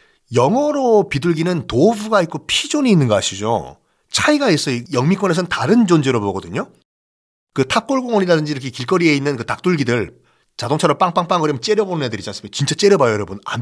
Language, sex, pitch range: Korean, male, 130-205 Hz